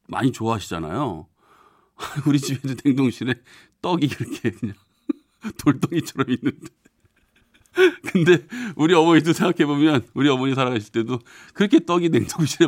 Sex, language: male, Korean